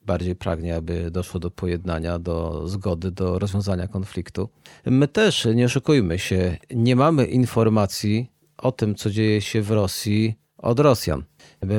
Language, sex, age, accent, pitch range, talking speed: Polish, male, 40-59, native, 95-120 Hz, 150 wpm